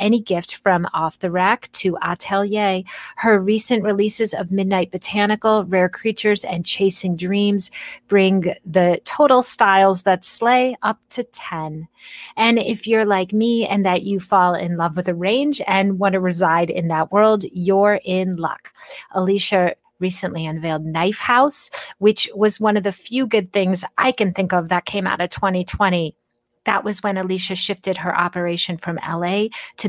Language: English